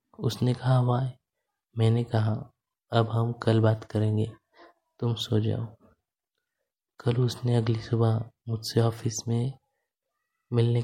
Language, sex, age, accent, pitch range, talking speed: Hindi, male, 20-39, native, 110-120 Hz, 115 wpm